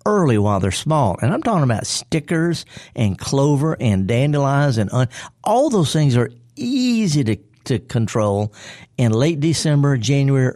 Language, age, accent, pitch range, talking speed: English, 50-69, American, 115-155 Hz, 150 wpm